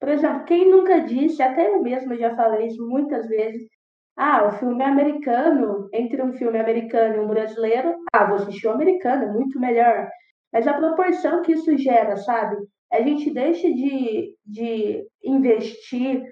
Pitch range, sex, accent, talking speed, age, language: 230-300 Hz, female, Brazilian, 165 wpm, 20-39, Portuguese